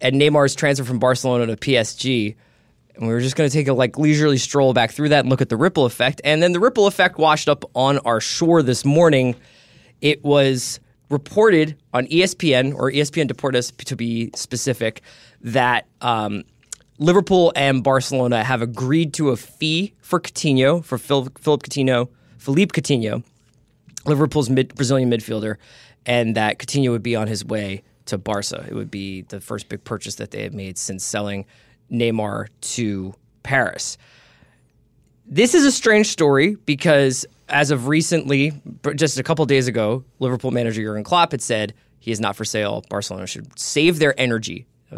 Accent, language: American, English